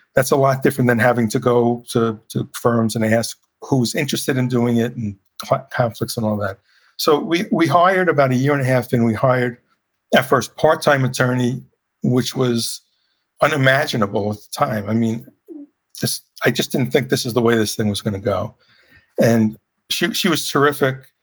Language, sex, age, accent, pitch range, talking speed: English, male, 50-69, American, 115-135 Hz, 195 wpm